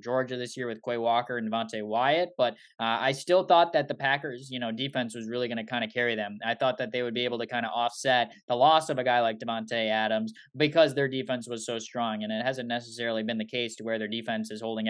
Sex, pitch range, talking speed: male, 115-140 Hz, 265 wpm